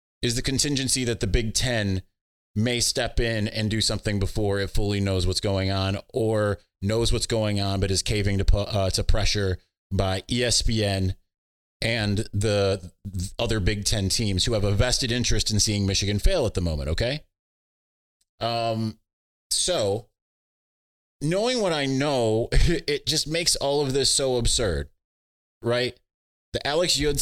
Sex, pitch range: male, 95-125 Hz